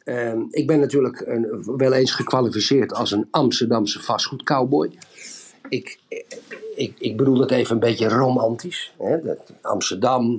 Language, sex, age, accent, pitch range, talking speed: Dutch, male, 50-69, Dutch, 120-185 Hz, 140 wpm